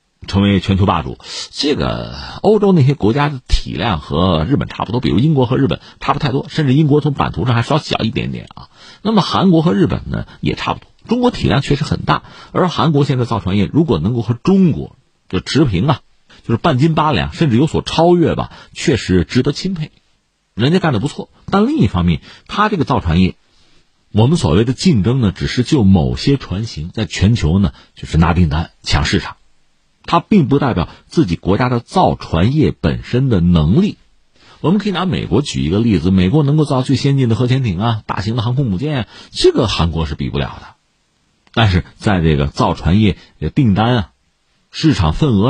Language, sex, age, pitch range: Chinese, male, 50-69, 90-150 Hz